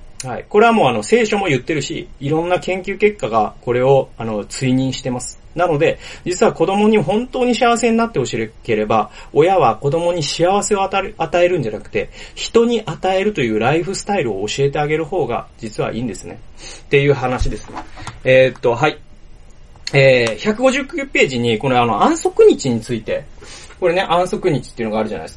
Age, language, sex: 30-49, Japanese, male